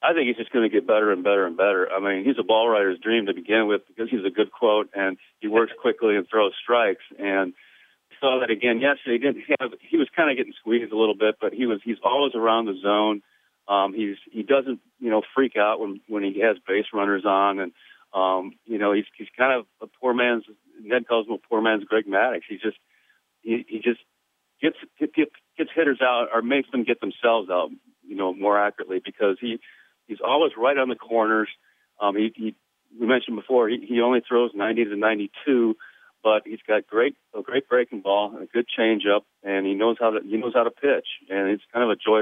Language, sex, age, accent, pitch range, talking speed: English, male, 40-59, American, 105-120 Hz, 230 wpm